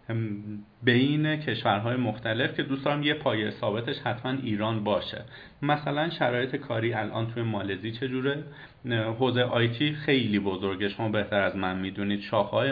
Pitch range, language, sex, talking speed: 115-135 Hz, Persian, male, 130 wpm